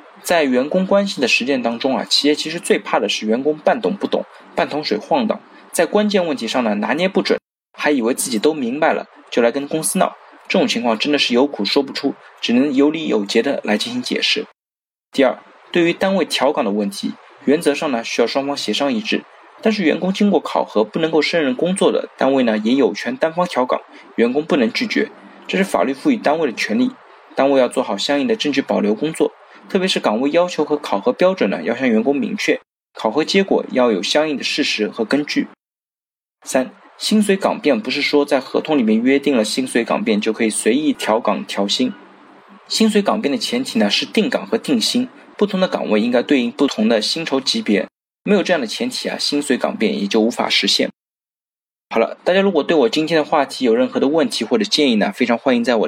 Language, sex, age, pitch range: Chinese, male, 20-39, 135-225 Hz